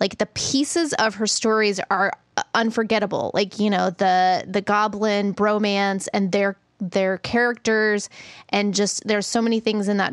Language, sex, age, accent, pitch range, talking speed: English, female, 20-39, American, 180-210 Hz, 160 wpm